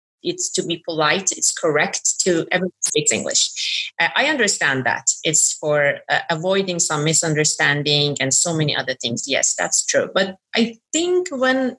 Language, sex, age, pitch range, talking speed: English, female, 30-49, 155-220 Hz, 165 wpm